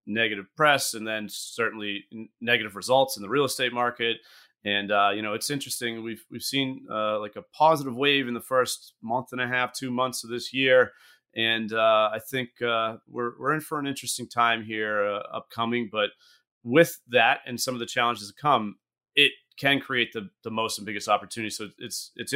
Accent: American